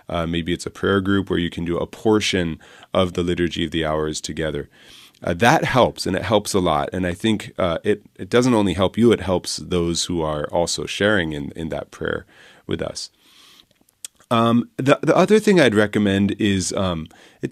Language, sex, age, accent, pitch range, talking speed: English, male, 30-49, American, 85-110 Hz, 205 wpm